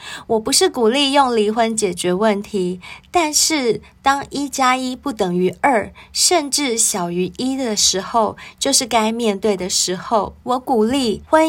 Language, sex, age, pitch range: Chinese, female, 20-39, 195-260 Hz